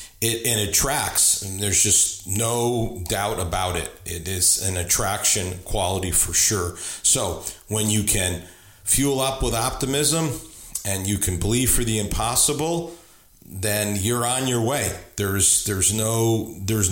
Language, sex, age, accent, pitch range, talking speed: English, male, 40-59, American, 95-115 Hz, 145 wpm